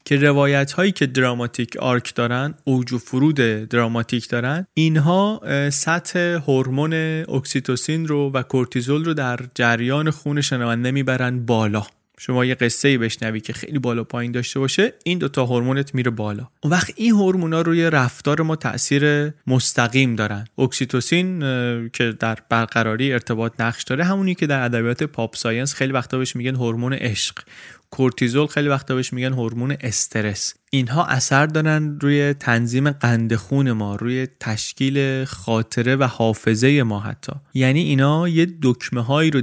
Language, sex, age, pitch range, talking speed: Persian, male, 30-49, 115-145 Hz, 150 wpm